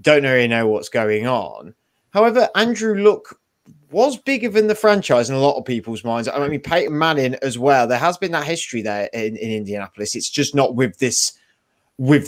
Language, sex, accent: English, male, British